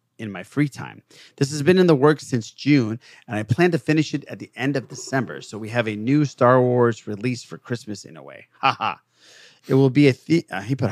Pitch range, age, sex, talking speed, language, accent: 115-150 Hz, 30-49, male, 255 wpm, English, American